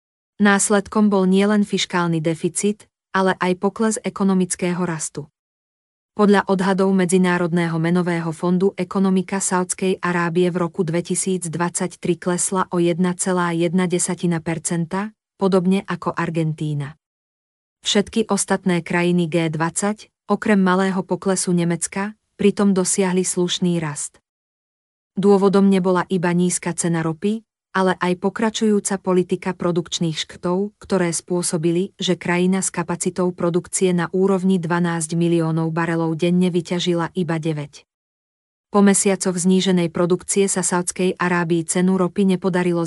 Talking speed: 110 wpm